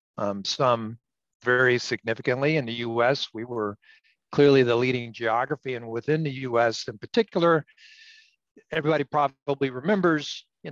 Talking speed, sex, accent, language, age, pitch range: 130 wpm, male, American, English, 50-69, 110-140 Hz